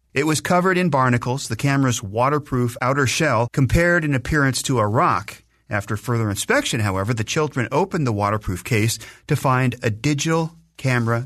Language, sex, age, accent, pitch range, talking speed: English, male, 40-59, American, 110-155 Hz, 165 wpm